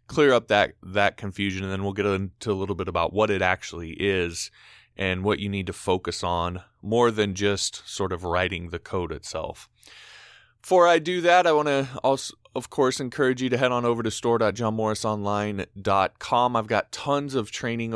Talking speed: 190 wpm